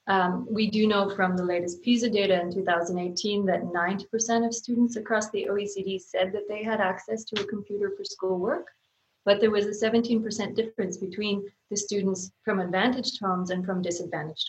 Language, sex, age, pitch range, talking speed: English, female, 30-49, 185-220 Hz, 180 wpm